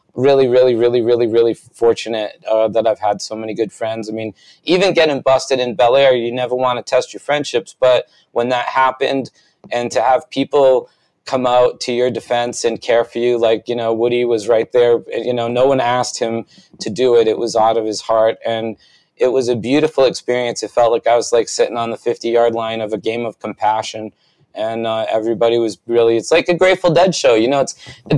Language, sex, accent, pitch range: English, male, American, 115-145 Hz